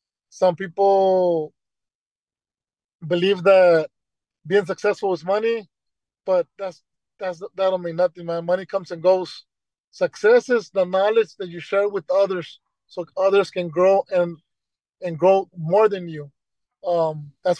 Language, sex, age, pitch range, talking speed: English, male, 20-39, 170-195 Hz, 140 wpm